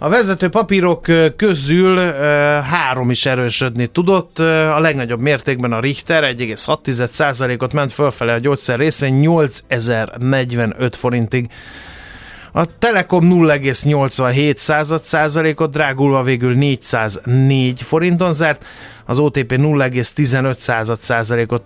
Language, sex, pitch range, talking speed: Hungarian, male, 120-150 Hz, 90 wpm